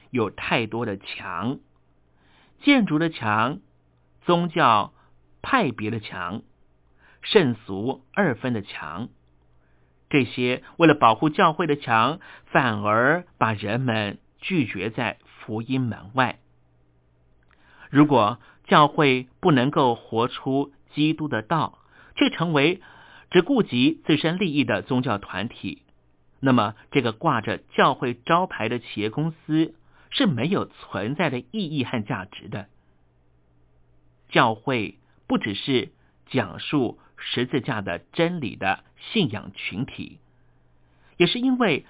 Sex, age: male, 50-69